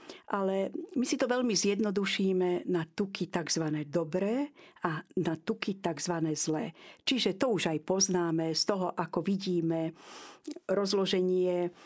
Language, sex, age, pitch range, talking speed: Slovak, female, 50-69, 175-210 Hz, 125 wpm